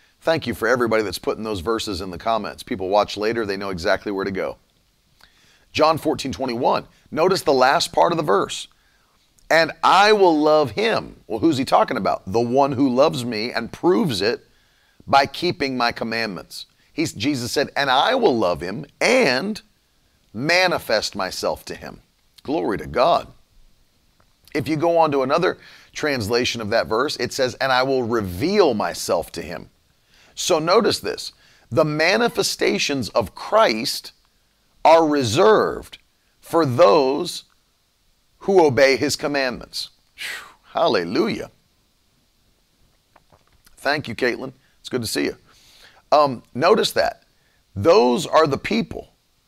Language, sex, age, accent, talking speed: English, male, 40-59, American, 140 wpm